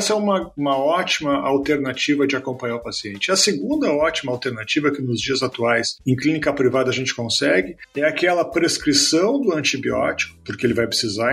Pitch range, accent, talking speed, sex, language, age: 125-165 Hz, Brazilian, 175 wpm, male, Portuguese, 40-59